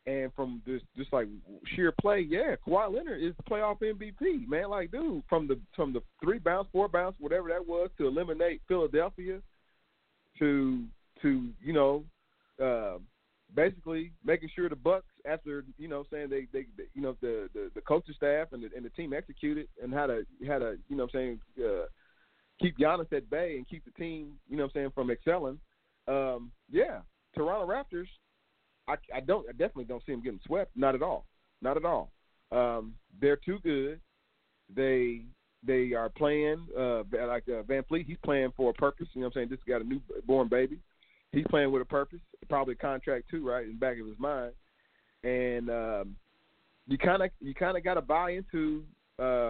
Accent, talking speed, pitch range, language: American, 200 wpm, 125-175 Hz, English